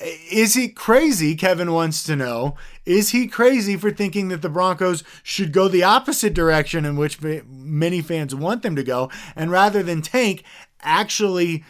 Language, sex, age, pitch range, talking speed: English, male, 20-39, 160-200 Hz, 170 wpm